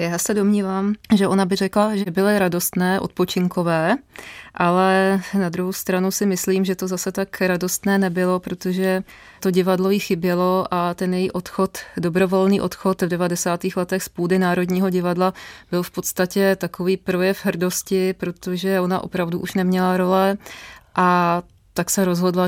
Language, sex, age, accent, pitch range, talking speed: Czech, female, 20-39, native, 175-190 Hz, 150 wpm